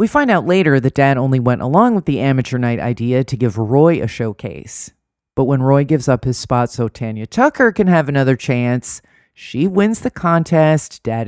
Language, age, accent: English, 30-49, American